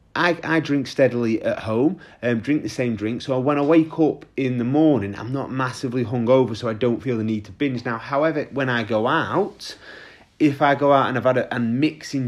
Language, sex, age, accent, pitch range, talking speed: English, male, 30-49, British, 110-145 Hz, 225 wpm